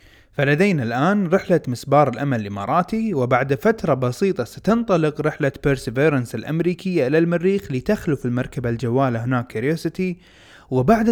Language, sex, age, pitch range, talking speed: Arabic, male, 30-49, 130-190 Hz, 115 wpm